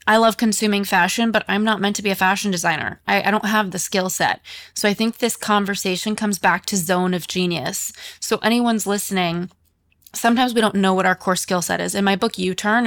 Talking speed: 225 wpm